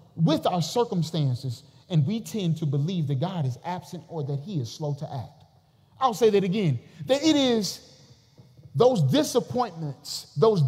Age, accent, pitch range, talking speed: 30-49, American, 135-175 Hz, 165 wpm